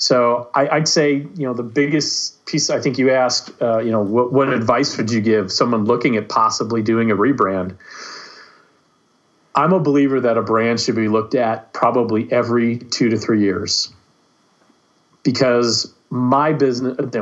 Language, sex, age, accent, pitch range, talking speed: English, male, 40-59, American, 115-140 Hz, 170 wpm